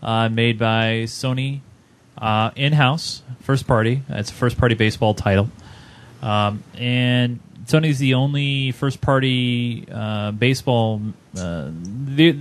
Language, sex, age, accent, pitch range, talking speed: English, male, 30-49, American, 115-135 Hz, 115 wpm